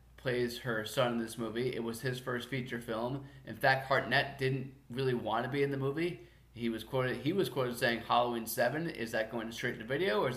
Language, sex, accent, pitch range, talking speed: English, male, American, 110-135 Hz, 235 wpm